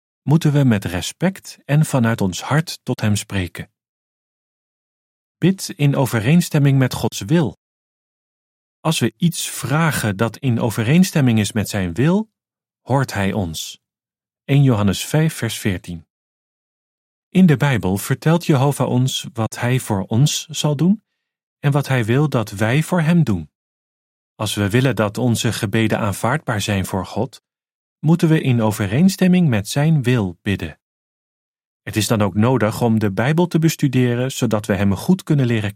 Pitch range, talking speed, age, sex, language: 105-150 Hz, 155 wpm, 40-59, male, Dutch